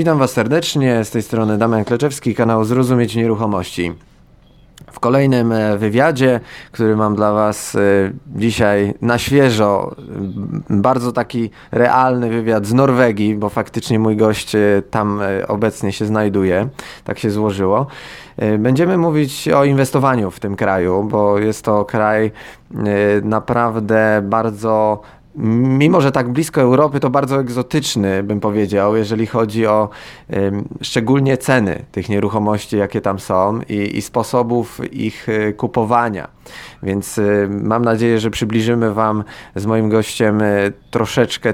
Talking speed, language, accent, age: 125 wpm, Polish, native, 20-39